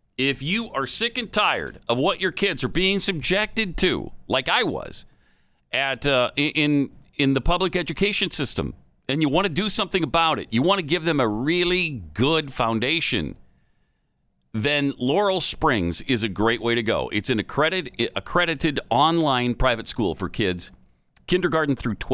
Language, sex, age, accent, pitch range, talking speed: English, male, 50-69, American, 110-160 Hz, 170 wpm